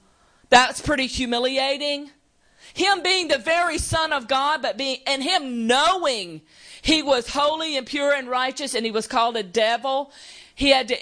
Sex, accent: female, American